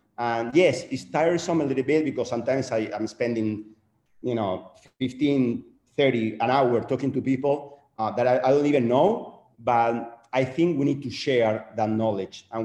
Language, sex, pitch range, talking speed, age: English, male, 115-170 Hz, 175 wpm, 40-59